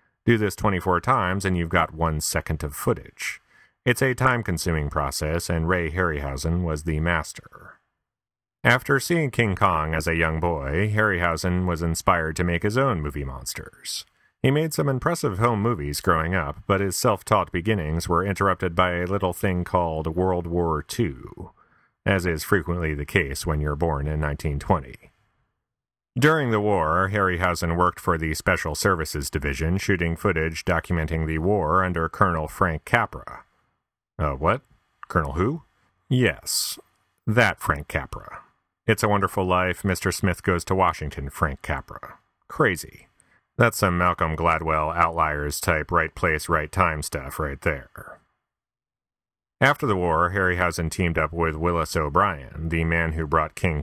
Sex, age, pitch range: male, 40-59, 80-100 Hz